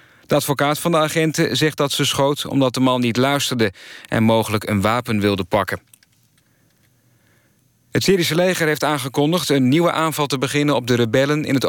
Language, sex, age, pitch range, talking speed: Dutch, male, 40-59, 110-135 Hz, 180 wpm